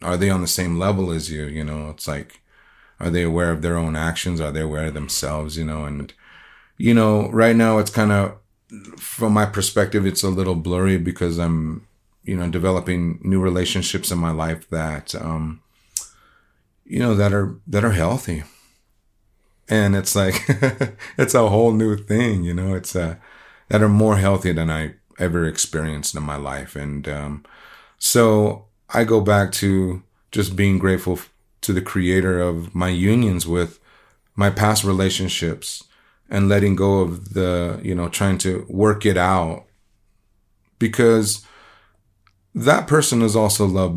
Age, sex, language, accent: 30-49, male, English, American